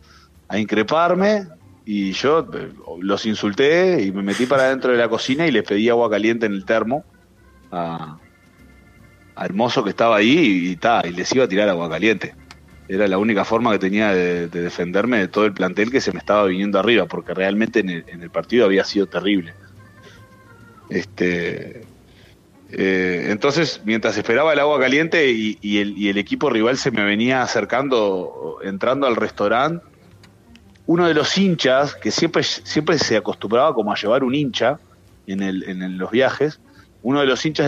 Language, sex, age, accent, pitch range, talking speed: Spanish, male, 30-49, Argentinian, 95-120 Hz, 170 wpm